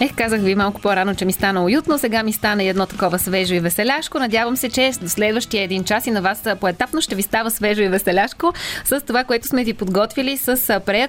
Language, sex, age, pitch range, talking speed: Bulgarian, female, 20-39, 200-265 Hz, 220 wpm